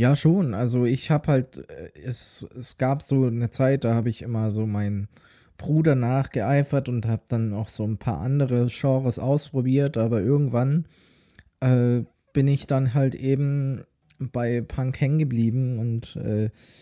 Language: German